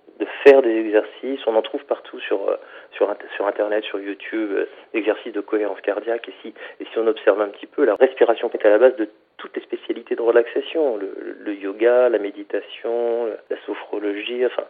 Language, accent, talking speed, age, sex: French, French, 190 wpm, 40-59, male